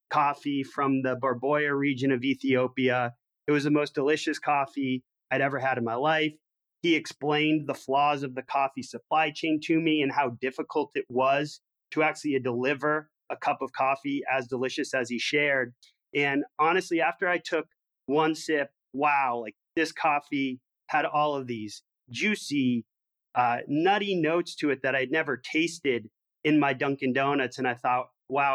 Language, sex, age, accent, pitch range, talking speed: English, male, 30-49, American, 130-155 Hz, 170 wpm